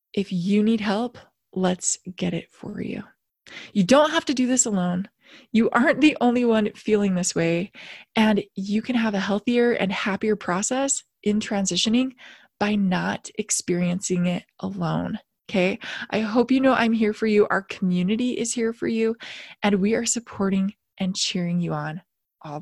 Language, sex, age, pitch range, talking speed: English, female, 20-39, 200-260 Hz, 170 wpm